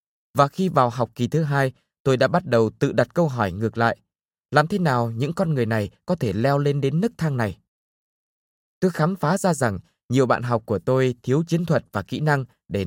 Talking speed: 230 wpm